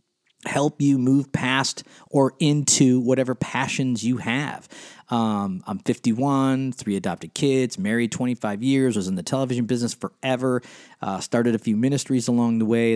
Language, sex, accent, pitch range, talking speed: English, male, American, 115-145 Hz, 155 wpm